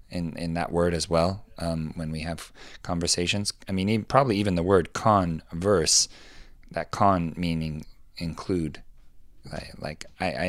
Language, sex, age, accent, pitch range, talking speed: English, male, 20-39, American, 85-105 Hz, 155 wpm